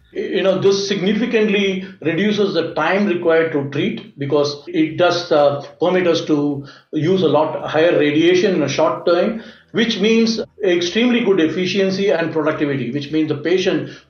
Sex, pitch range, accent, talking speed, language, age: male, 155-190 Hz, Indian, 160 wpm, English, 60-79